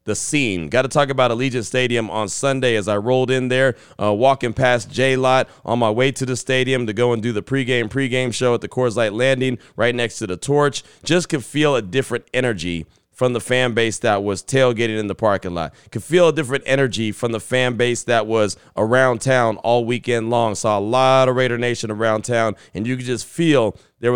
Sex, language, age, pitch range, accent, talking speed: male, English, 30-49, 110-130 Hz, American, 225 wpm